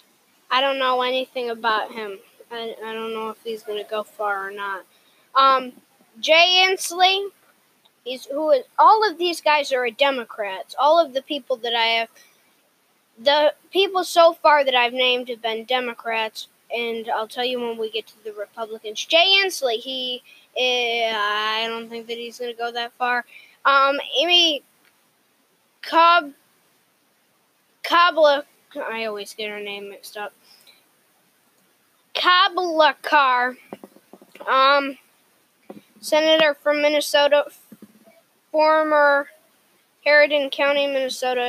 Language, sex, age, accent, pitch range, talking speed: English, female, 10-29, American, 230-295 Hz, 125 wpm